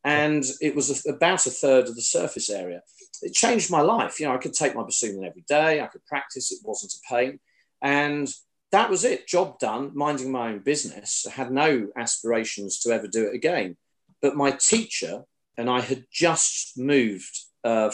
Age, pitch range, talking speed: 40-59, 115-145 Hz, 195 wpm